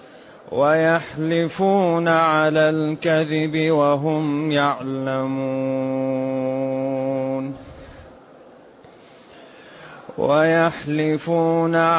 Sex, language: male, Arabic